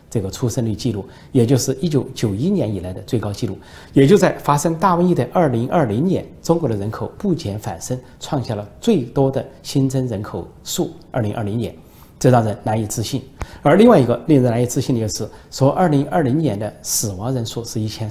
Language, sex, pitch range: Chinese, male, 105-140 Hz